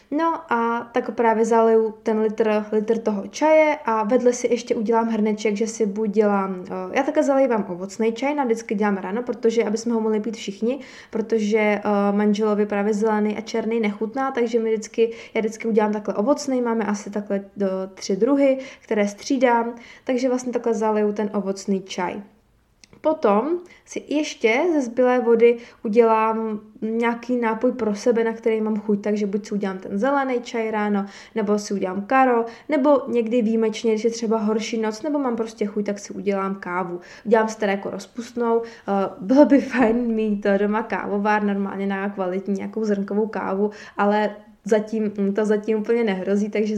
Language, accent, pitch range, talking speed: Czech, native, 205-240 Hz, 175 wpm